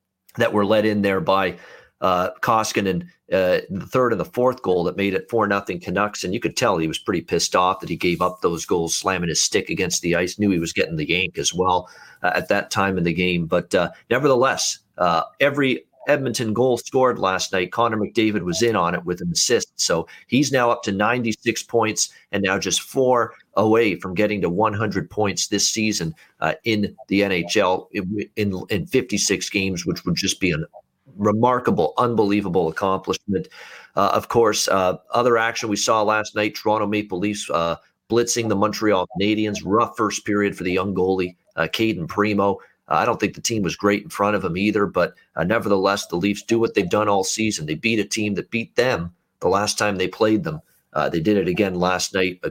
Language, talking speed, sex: English, 210 wpm, male